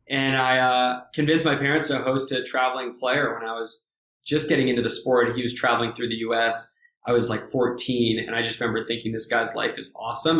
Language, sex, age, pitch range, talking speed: English, male, 20-39, 115-130 Hz, 225 wpm